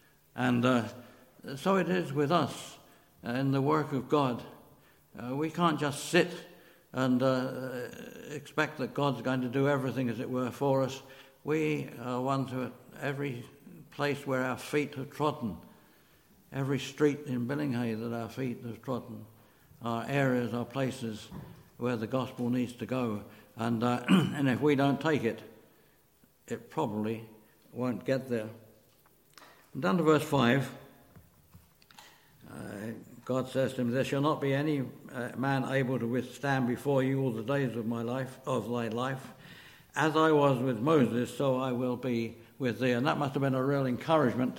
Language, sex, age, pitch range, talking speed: English, male, 60-79, 120-140 Hz, 170 wpm